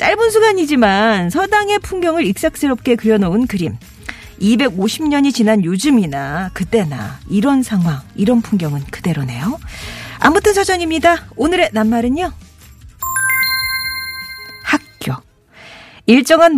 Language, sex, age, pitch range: Korean, female, 40-59, 175-275 Hz